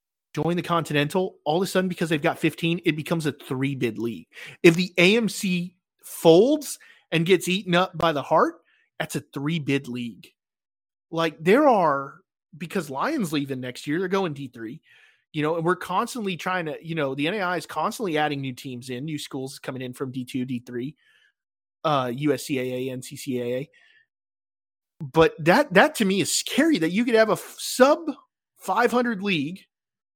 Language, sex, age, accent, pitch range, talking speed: English, male, 30-49, American, 145-200 Hz, 165 wpm